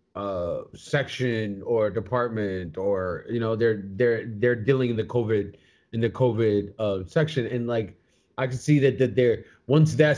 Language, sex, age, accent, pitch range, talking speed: English, male, 20-39, American, 120-150 Hz, 170 wpm